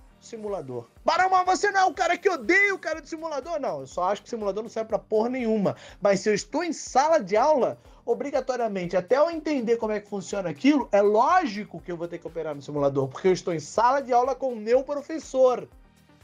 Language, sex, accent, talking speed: Portuguese, male, Brazilian, 235 wpm